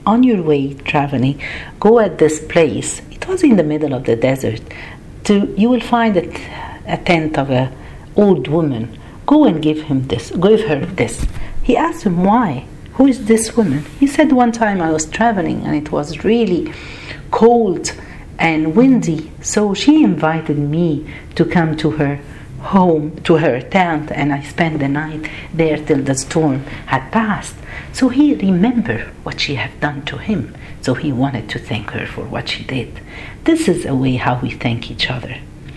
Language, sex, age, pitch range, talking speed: Arabic, female, 50-69, 140-215 Hz, 180 wpm